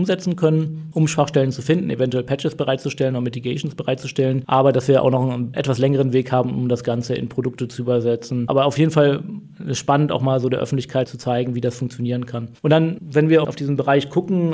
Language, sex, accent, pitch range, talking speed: German, male, German, 135-155 Hz, 230 wpm